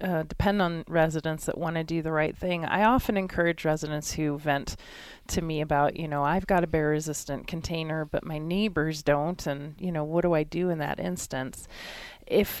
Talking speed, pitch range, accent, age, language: 205 wpm, 145-170 Hz, American, 30-49, English